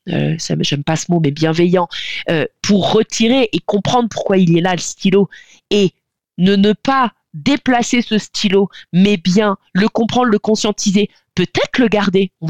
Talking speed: 175 wpm